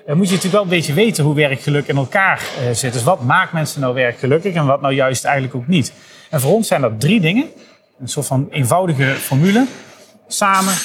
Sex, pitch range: male, 135-195 Hz